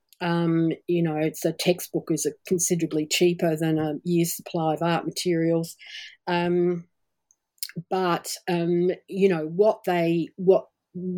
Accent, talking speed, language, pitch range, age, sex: Australian, 130 wpm, English, 155-180 Hz, 40-59, female